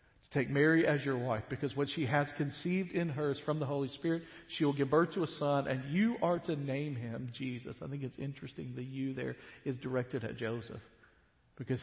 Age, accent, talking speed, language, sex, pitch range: 40-59, American, 220 wpm, English, male, 120-145 Hz